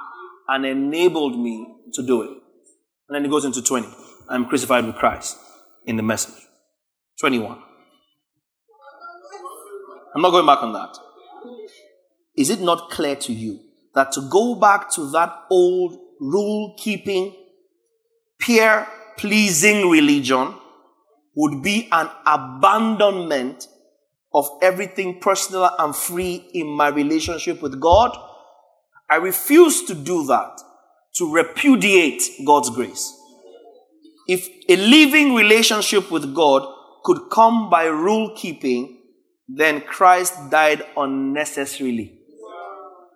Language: English